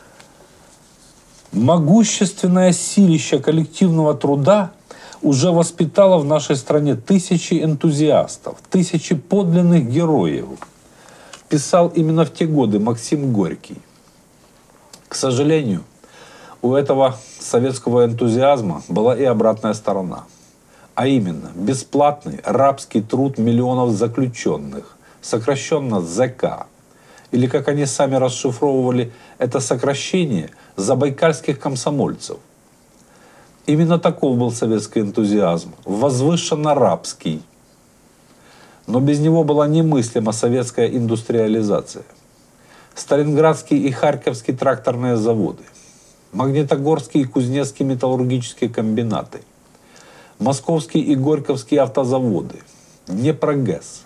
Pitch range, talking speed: 125-160 Hz, 85 wpm